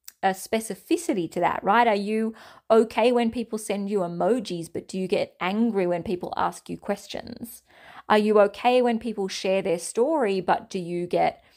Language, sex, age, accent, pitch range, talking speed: English, female, 30-49, Australian, 185-240 Hz, 180 wpm